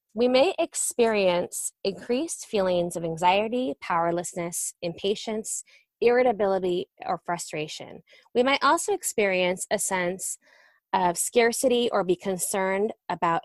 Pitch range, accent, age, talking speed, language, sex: 180-230 Hz, American, 20-39, 105 wpm, English, female